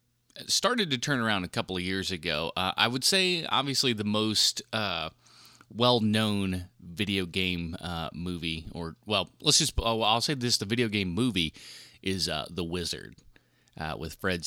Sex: male